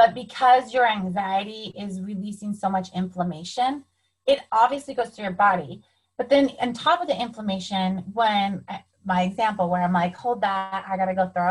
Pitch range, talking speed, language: 190-240 Hz, 175 wpm, English